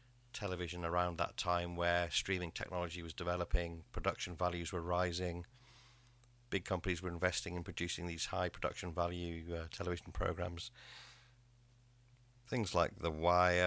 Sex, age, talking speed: male, 50-69, 130 wpm